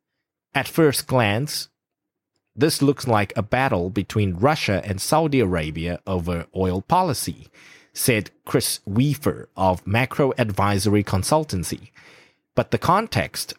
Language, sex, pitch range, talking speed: English, male, 95-145 Hz, 115 wpm